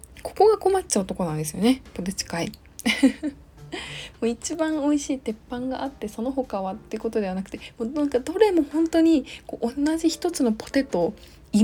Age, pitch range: 20-39, 190-275 Hz